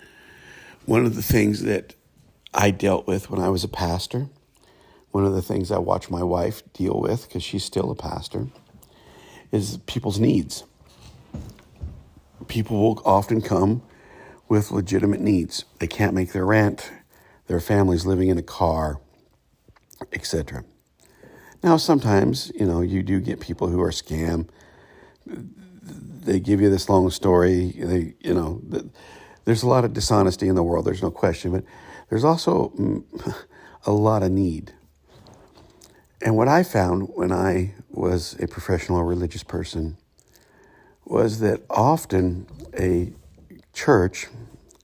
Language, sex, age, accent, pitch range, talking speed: English, male, 50-69, American, 90-110 Hz, 140 wpm